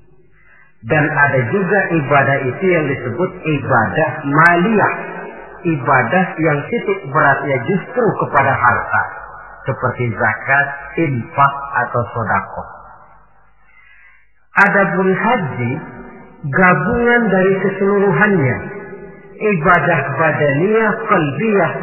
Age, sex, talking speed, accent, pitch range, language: 50-69, male, 80 wpm, native, 130-200 Hz, Indonesian